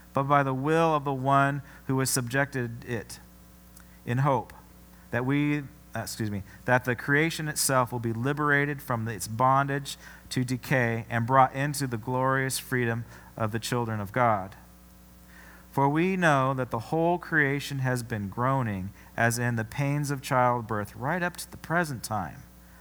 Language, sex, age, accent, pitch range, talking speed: English, male, 40-59, American, 110-155 Hz, 165 wpm